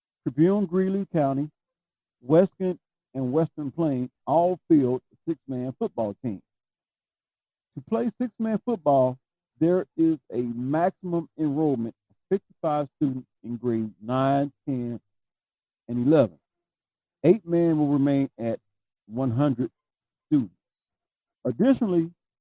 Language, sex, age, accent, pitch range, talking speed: English, male, 50-69, American, 125-180 Hz, 100 wpm